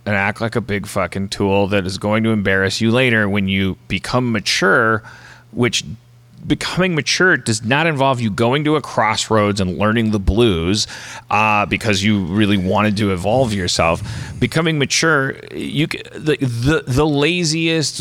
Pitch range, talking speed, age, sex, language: 105-135 Hz, 160 wpm, 30-49, male, English